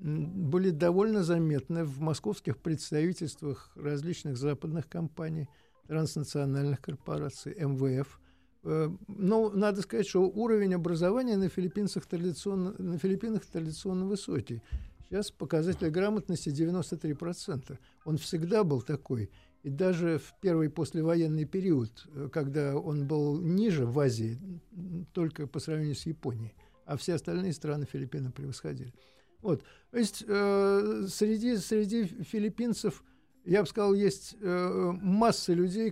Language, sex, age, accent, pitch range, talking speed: Russian, male, 60-79, native, 155-200 Hz, 115 wpm